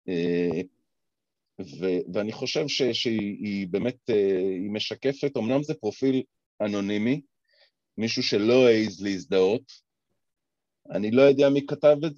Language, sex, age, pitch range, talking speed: Hebrew, male, 40-59, 95-130 Hz, 120 wpm